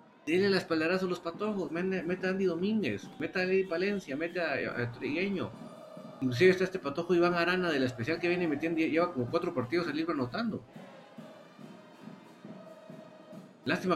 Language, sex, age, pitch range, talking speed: Spanish, male, 50-69, 130-185 Hz, 145 wpm